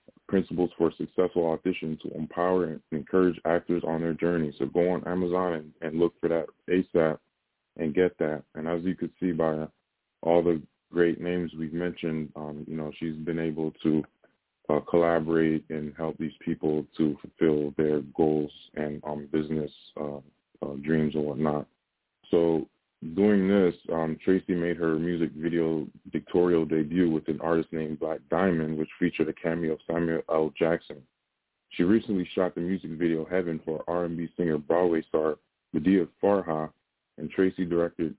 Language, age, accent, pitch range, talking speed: English, 20-39, American, 80-85 Hz, 165 wpm